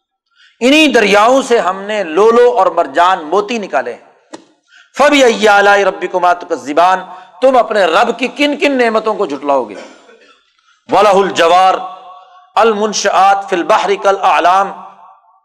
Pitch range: 190-270 Hz